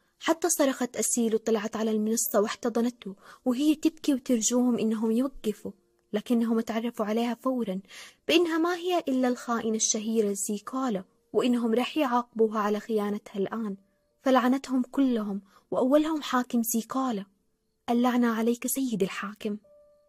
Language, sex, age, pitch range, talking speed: Arabic, female, 20-39, 220-255 Hz, 115 wpm